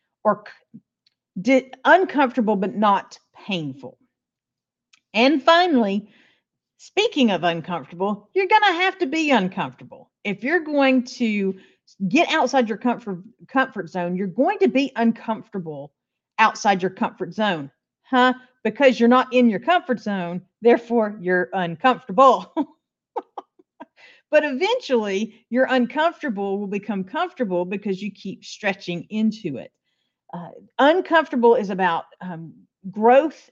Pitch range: 195-265 Hz